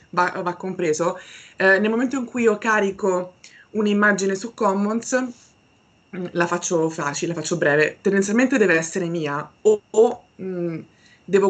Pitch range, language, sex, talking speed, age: 175-215 Hz, Italian, female, 135 wpm, 20-39